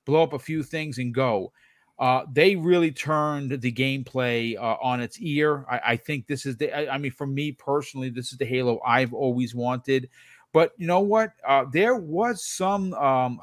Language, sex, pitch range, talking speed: English, male, 130-170 Hz, 200 wpm